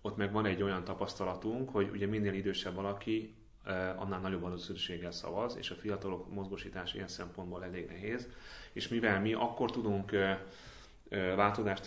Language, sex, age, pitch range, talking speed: Hungarian, male, 30-49, 90-105 Hz, 145 wpm